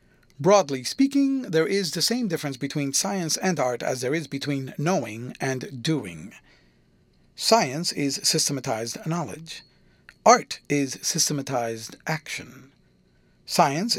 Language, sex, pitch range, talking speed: English, male, 140-190 Hz, 115 wpm